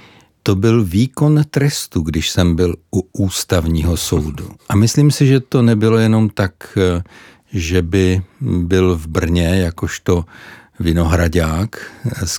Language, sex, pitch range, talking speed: Czech, male, 90-110 Hz, 125 wpm